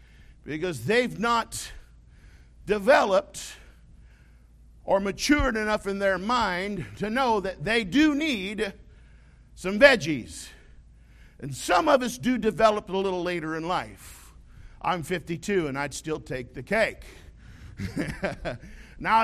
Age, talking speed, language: 50-69, 120 wpm, English